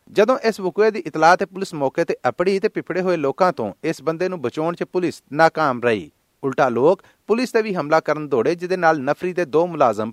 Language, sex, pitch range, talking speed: Punjabi, male, 145-195 Hz, 220 wpm